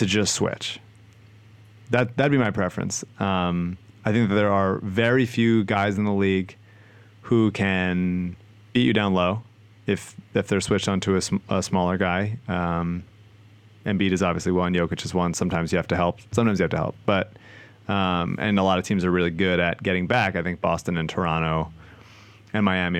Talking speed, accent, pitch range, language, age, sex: 200 wpm, American, 95-110 Hz, English, 30-49, male